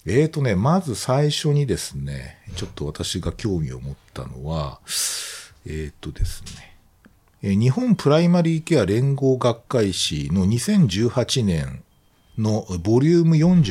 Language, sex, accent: Japanese, male, native